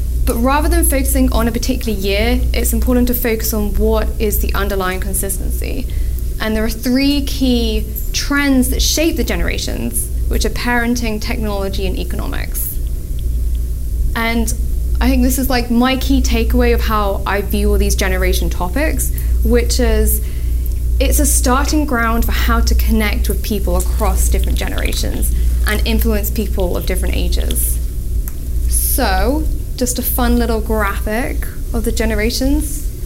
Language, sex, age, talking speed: English, female, 10-29, 145 wpm